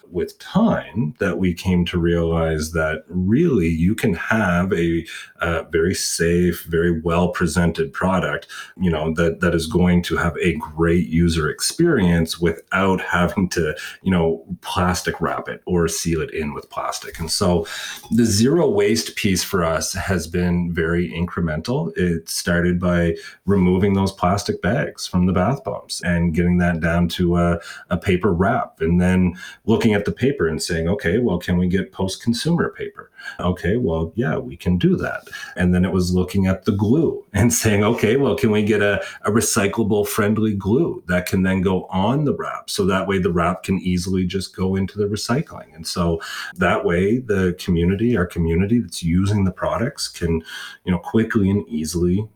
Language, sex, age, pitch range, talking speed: English, male, 30-49, 85-100 Hz, 180 wpm